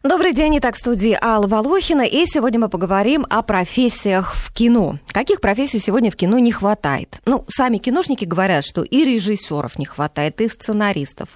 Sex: female